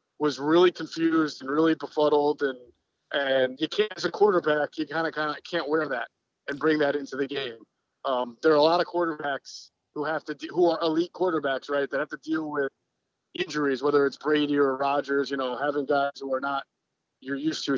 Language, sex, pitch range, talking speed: English, male, 140-165 Hz, 215 wpm